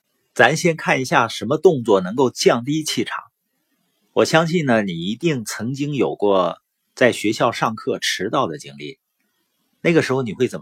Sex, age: male, 50-69